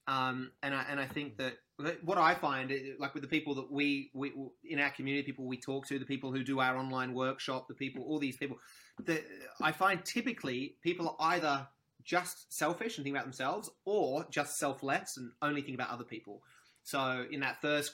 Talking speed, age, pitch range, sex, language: 210 wpm, 20-39, 125-145 Hz, male, English